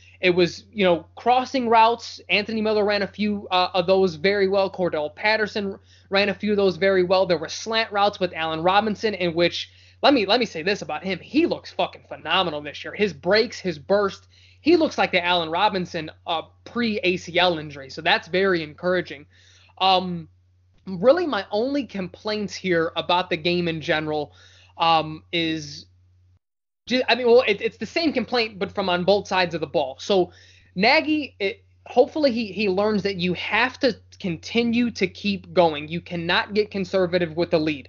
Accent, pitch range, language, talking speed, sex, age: American, 165-205 Hz, English, 185 wpm, male, 20-39